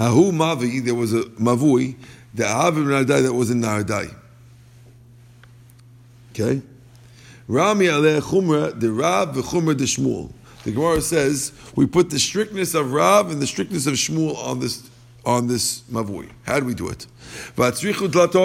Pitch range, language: 120-150 Hz, English